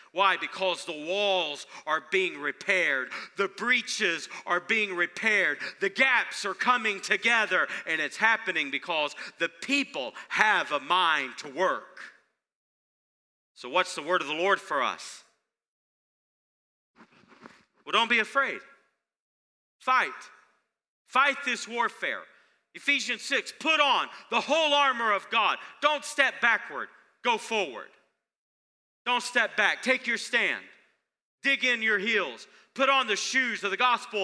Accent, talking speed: American, 135 wpm